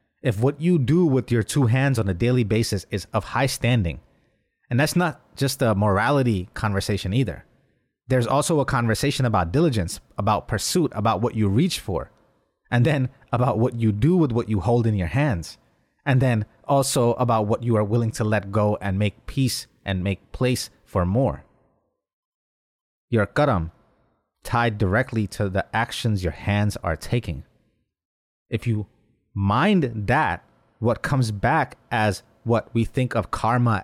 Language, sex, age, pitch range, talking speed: English, male, 30-49, 100-130 Hz, 165 wpm